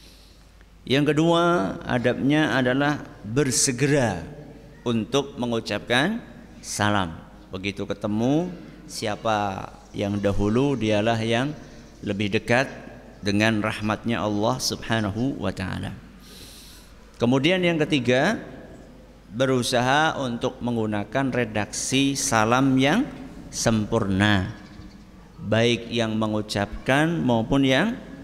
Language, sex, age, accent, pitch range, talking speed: Indonesian, male, 50-69, native, 105-130 Hz, 80 wpm